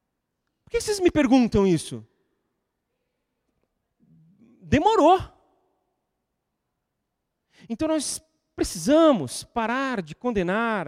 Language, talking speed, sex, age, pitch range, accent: Portuguese, 70 wpm, male, 40-59, 135-215 Hz, Brazilian